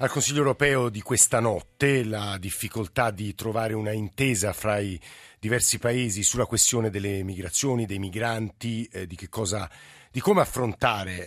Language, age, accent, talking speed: Italian, 50-69, native, 155 wpm